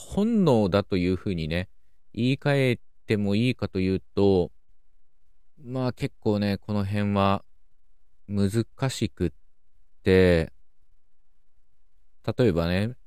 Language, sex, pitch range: Japanese, male, 85-115 Hz